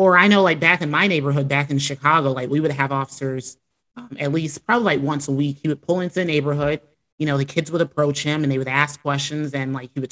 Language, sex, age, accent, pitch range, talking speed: English, male, 30-49, American, 140-165 Hz, 275 wpm